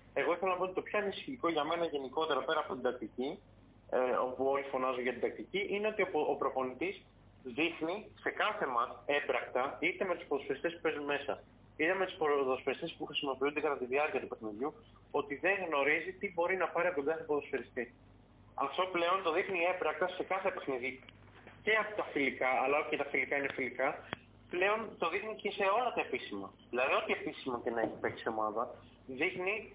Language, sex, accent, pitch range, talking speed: Greek, male, native, 130-195 Hz, 190 wpm